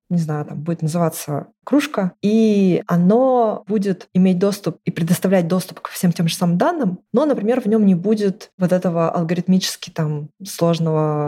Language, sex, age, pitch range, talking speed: Russian, female, 20-39, 165-200 Hz, 165 wpm